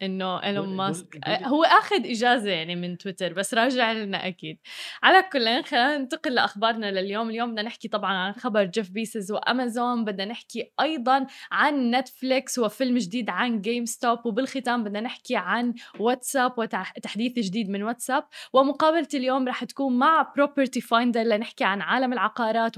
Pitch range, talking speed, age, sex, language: 215-270 Hz, 155 wpm, 10-29, female, Arabic